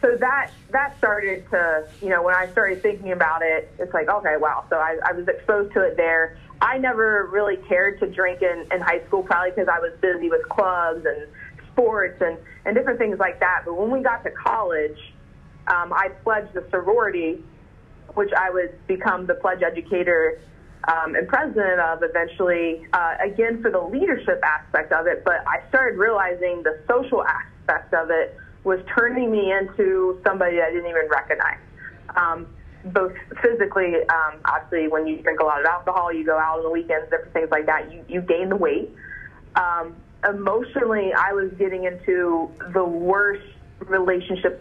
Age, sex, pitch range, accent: 20-39, female, 170-205 Hz, American